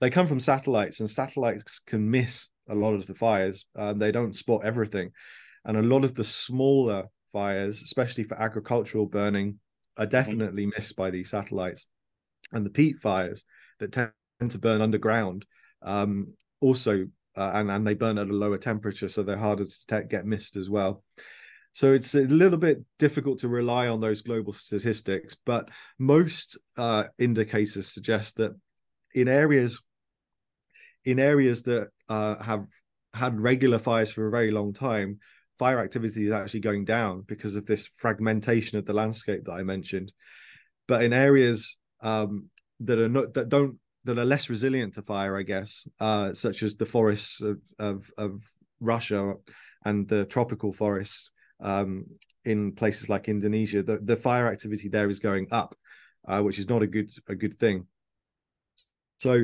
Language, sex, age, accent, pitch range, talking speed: English, male, 20-39, British, 100-120 Hz, 170 wpm